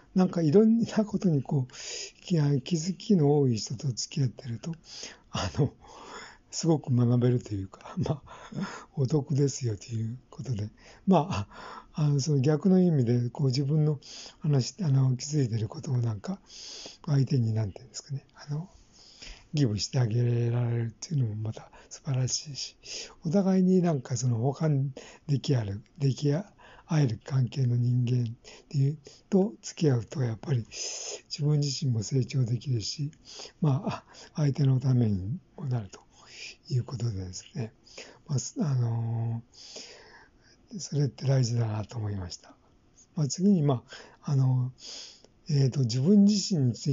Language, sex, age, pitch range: Japanese, male, 60-79, 120-155 Hz